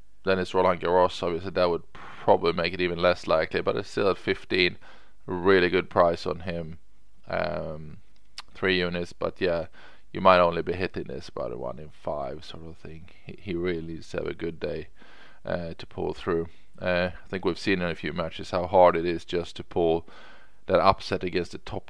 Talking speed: 205 wpm